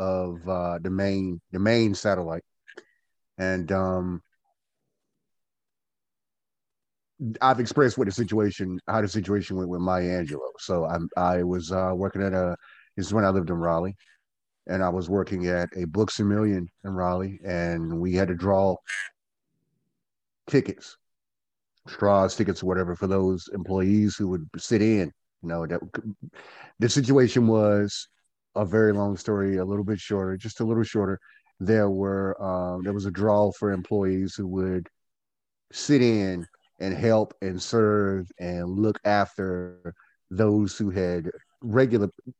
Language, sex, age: English, male, 30-49